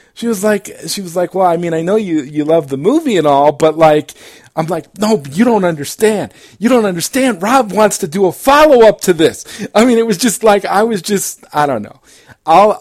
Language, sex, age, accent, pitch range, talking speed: English, male, 40-59, American, 130-180 Hz, 240 wpm